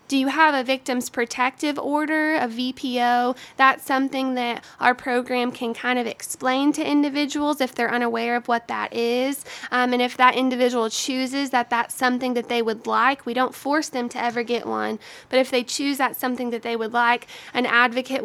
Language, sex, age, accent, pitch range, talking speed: English, female, 20-39, American, 240-270 Hz, 195 wpm